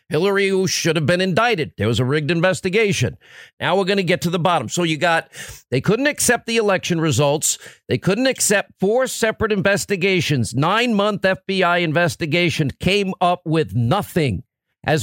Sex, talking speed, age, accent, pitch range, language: male, 170 wpm, 50-69, American, 150-205 Hz, English